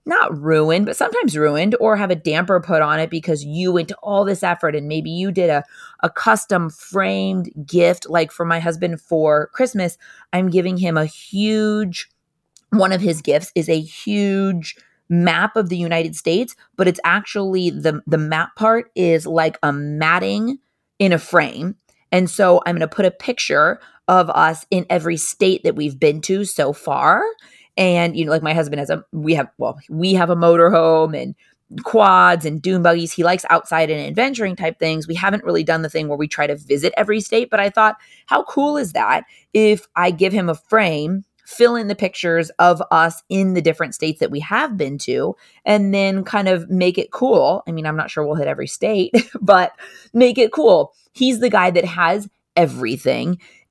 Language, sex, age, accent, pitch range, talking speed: English, female, 30-49, American, 160-200 Hz, 200 wpm